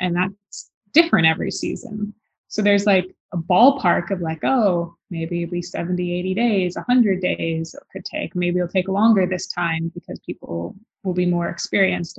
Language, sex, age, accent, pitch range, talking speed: English, female, 20-39, American, 180-220 Hz, 175 wpm